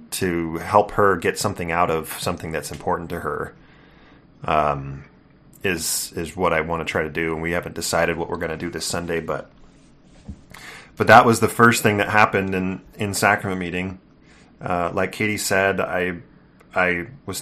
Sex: male